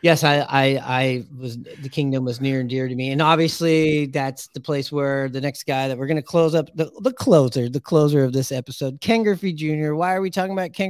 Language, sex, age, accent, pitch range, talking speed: English, male, 30-49, American, 125-160 Hz, 250 wpm